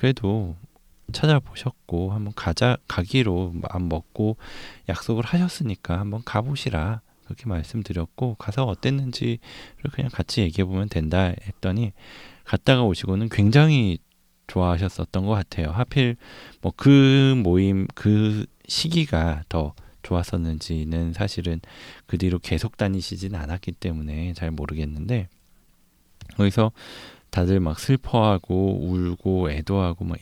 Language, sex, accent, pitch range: Korean, male, native, 85-115 Hz